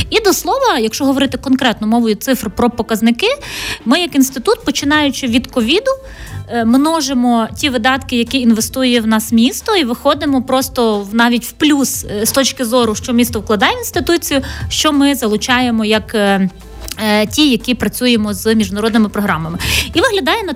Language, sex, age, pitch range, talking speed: Ukrainian, female, 30-49, 215-270 Hz, 150 wpm